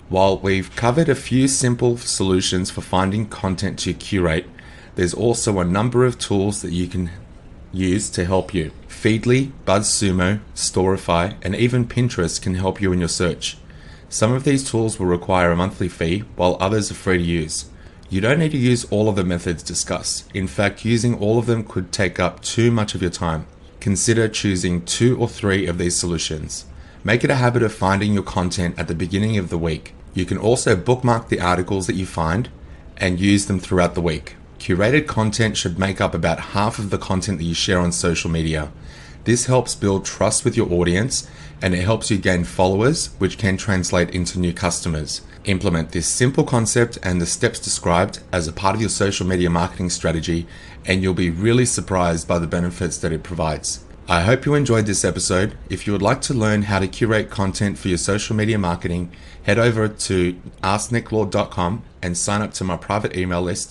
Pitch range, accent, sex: 85-110 Hz, Australian, male